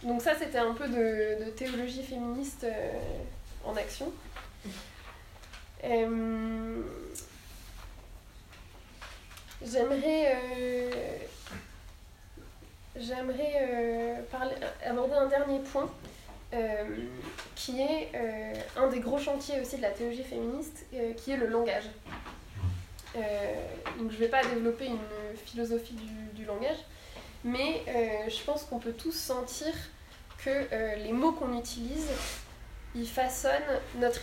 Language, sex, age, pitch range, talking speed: French, female, 20-39, 210-260 Hz, 115 wpm